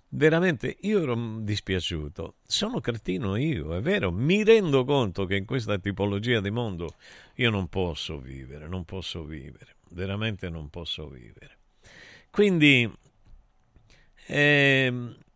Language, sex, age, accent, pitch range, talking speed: Italian, male, 50-69, native, 90-120 Hz, 120 wpm